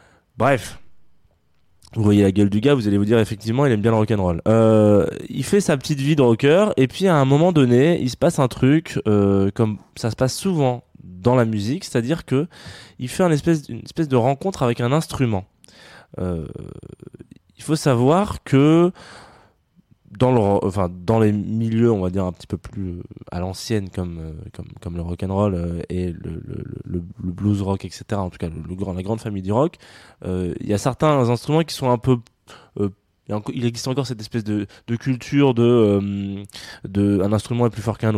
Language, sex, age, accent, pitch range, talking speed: French, male, 20-39, French, 95-125 Hz, 205 wpm